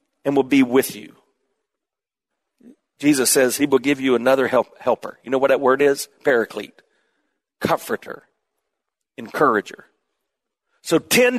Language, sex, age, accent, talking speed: English, male, 40-59, American, 130 wpm